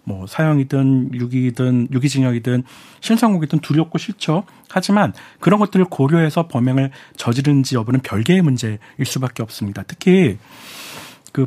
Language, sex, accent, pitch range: Korean, male, native, 125-165 Hz